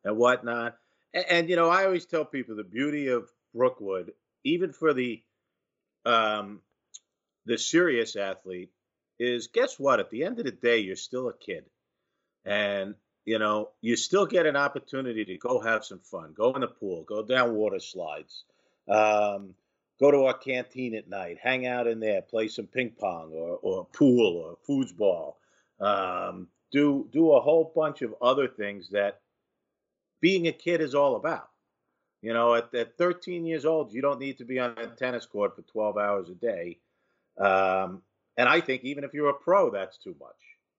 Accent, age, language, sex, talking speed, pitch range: American, 50-69, English, male, 180 wpm, 105-140 Hz